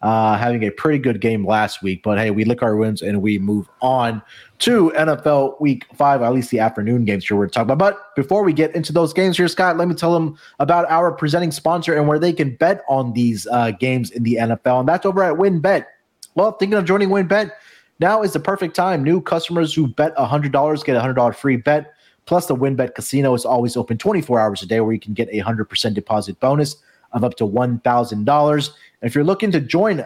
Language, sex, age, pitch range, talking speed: English, male, 20-39, 115-160 Hz, 230 wpm